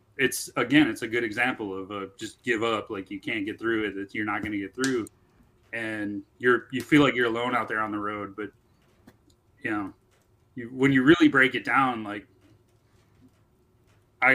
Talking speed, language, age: 200 wpm, English, 30-49